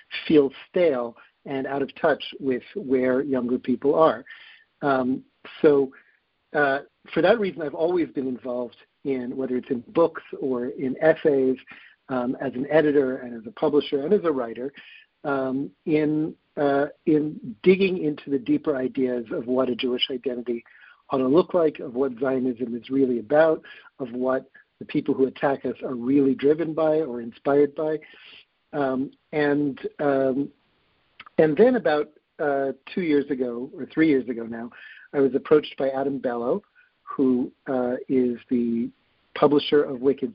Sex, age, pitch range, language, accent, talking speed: male, 50-69, 130-150 Hz, English, American, 160 wpm